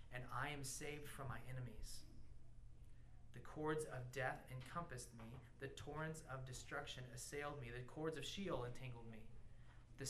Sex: male